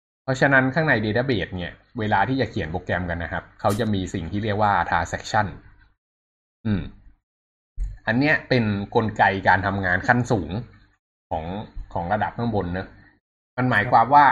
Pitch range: 90-110 Hz